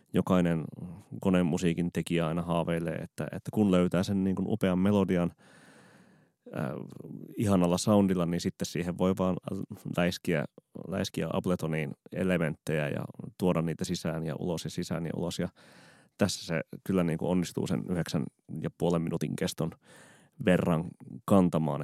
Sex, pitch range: male, 85-100 Hz